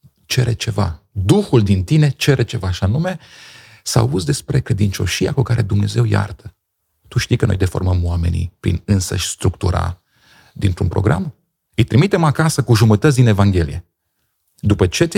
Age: 30-49